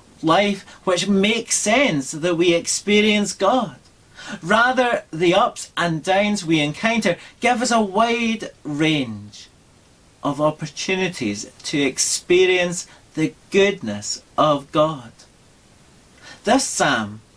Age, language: 40-59, English